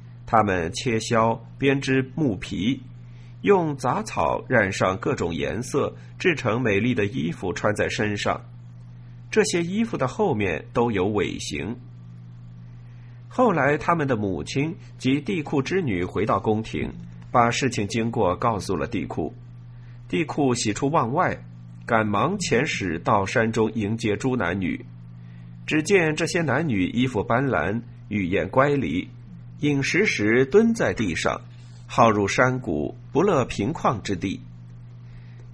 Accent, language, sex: native, Chinese, male